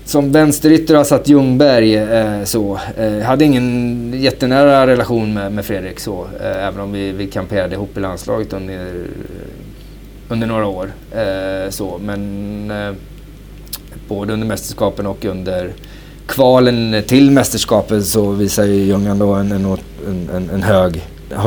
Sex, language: male, Swedish